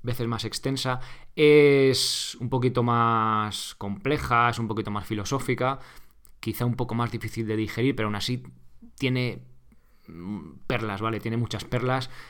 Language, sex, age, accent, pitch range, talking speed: Spanish, male, 20-39, Spanish, 100-120 Hz, 140 wpm